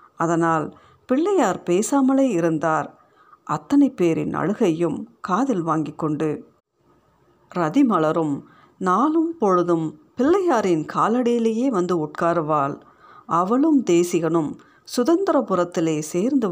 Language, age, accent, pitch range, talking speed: Tamil, 50-69, native, 160-250 Hz, 75 wpm